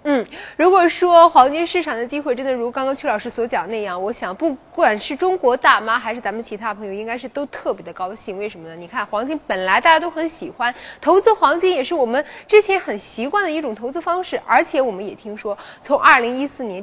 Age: 20-39